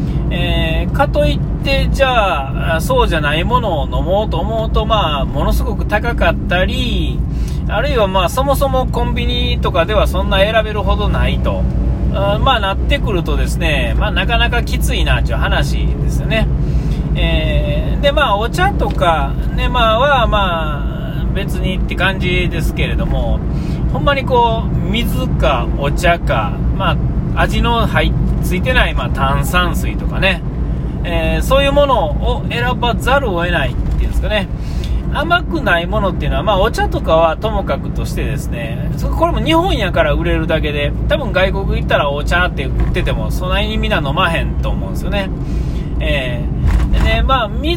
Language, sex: Japanese, male